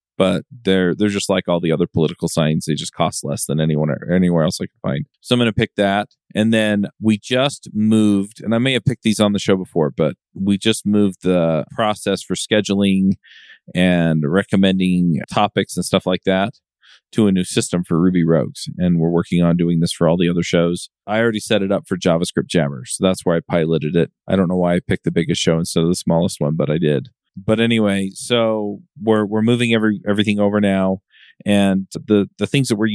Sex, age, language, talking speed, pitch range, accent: male, 40-59, English, 220 wpm, 90-110 Hz, American